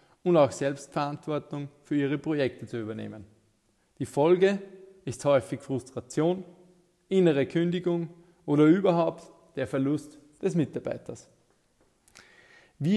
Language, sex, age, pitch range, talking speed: German, male, 20-39, 135-170 Hz, 100 wpm